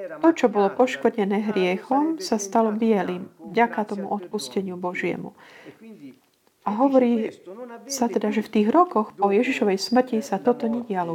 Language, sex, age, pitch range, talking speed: Slovak, female, 40-59, 195-235 Hz, 140 wpm